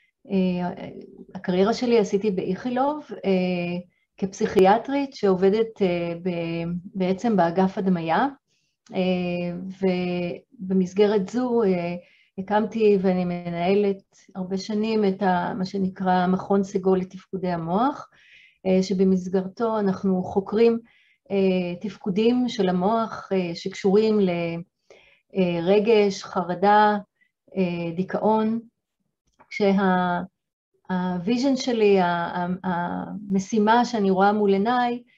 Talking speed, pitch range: 70 wpm, 185-215 Hz